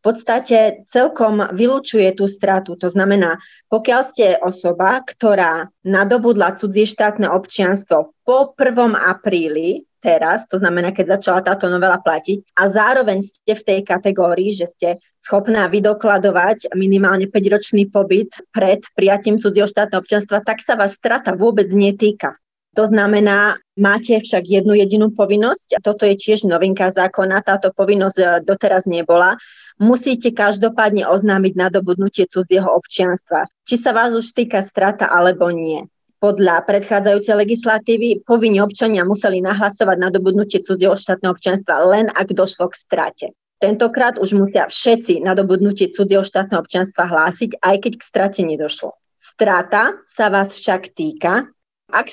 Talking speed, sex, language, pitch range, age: 135 wpm, female, Slovak, 190-215 Hz, 30-49